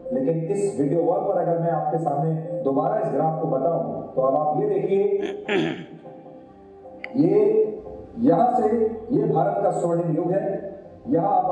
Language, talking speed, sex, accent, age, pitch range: Hindi, 90 wpm, male, native, 40-59, 155-220 Hz